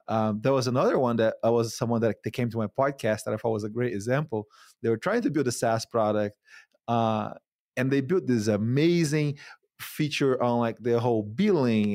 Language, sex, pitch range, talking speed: English, male, 110-135 Hz, 210 wpm